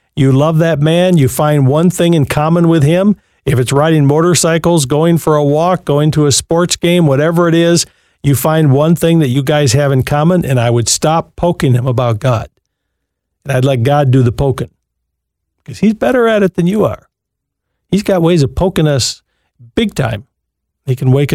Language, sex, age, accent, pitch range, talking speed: English, male, 50-69, American, 120-160 Hz, 200 wpm